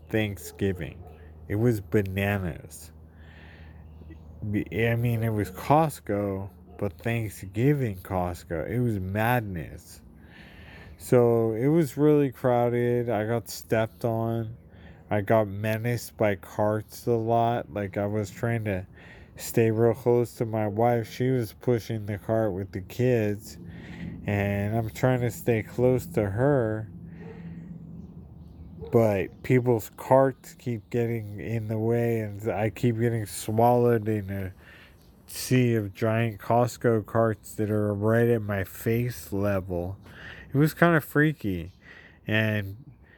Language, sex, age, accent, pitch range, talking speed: English, male, 20-39, American, 95-120 Hz, 125 wpm